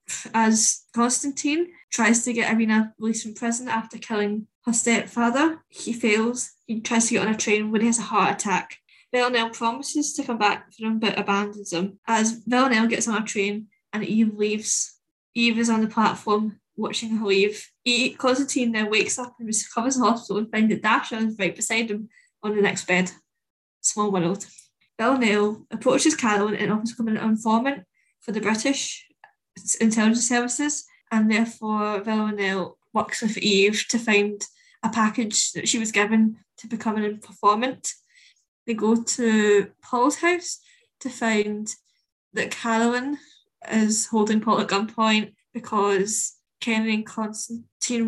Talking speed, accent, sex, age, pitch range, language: 155 wpm, British, female, 10-29, 210-235 Hz, English